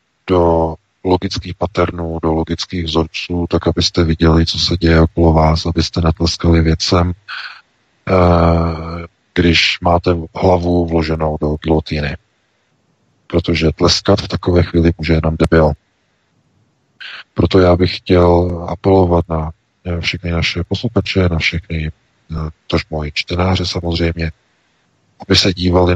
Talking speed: 110 wpm